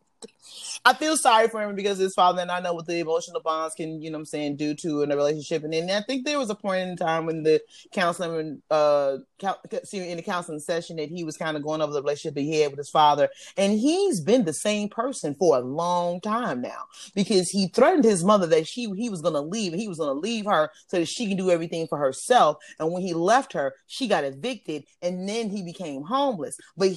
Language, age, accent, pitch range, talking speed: English, 30-49, American, 160-225 Hz, 245 wpm